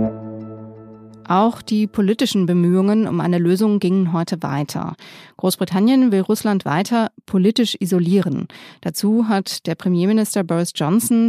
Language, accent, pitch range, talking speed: German, German, 170-205 Hz, 115 wpm